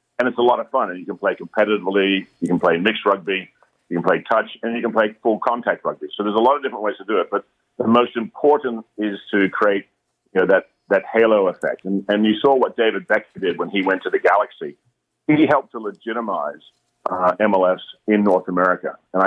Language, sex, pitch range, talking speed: English, male, 95-115 Hz, 230 wpm